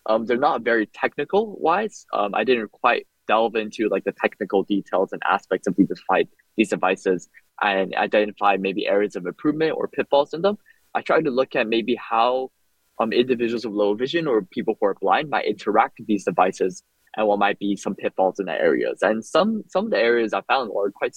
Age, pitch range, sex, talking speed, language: 10-29, 105-130 Hz, male, 200 wpm, English